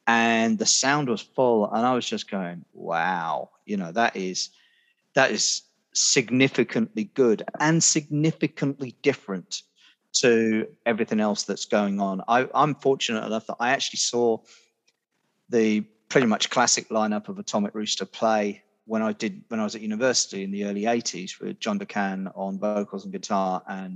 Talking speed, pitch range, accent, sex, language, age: 160 wpm, 105-145 Hz, British, male, English, 40-59